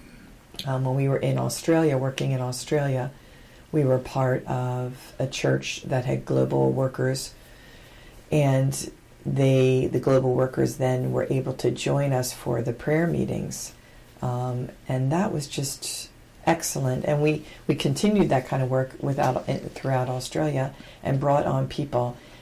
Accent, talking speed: American, 145 wpm